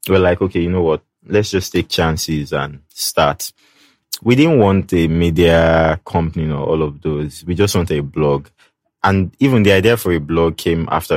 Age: 20-39